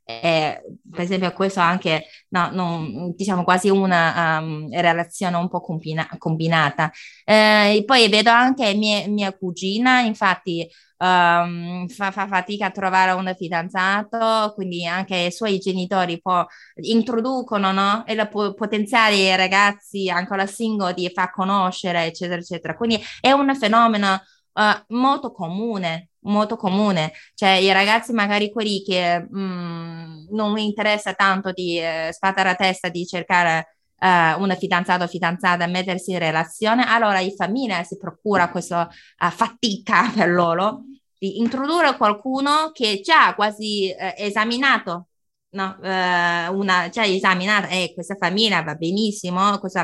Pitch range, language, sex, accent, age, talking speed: 175-210 Hz, Italian, female, native, 20-39, 140 wpm